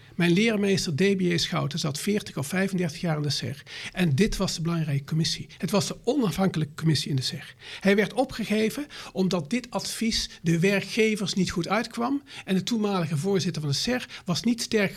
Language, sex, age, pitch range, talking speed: Dutch, male, 50-69, 165-215 Hz, 195 wpm